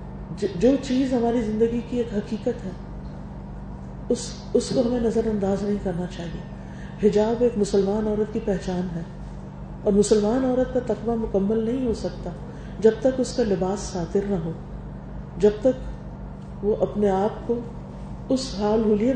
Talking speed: 155 wpm